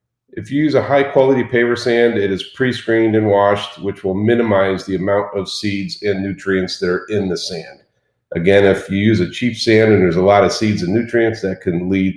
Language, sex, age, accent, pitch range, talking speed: English, male, 40-59, American, 95-110 Hz, 215 wpm